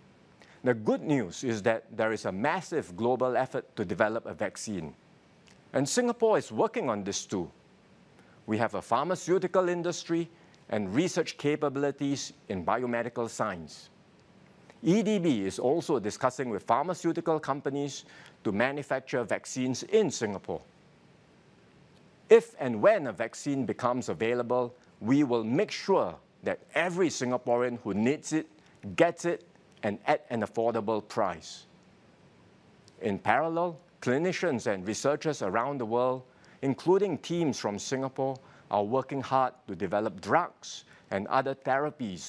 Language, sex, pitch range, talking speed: English, male, 120-160 Hz, 130 wpm